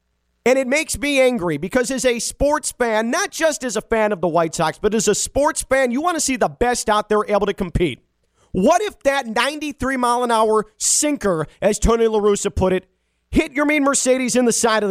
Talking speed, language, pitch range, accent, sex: 230 wpm, English, 180-270 Hz, American, male